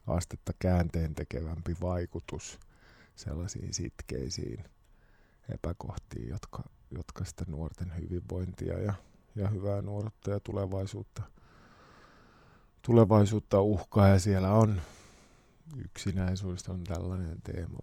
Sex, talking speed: male, 90 wpm